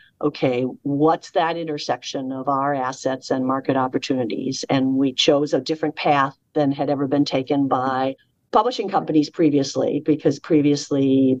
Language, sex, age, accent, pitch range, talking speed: English, female, 50-69, American, 140-155 Hz, 140 wpm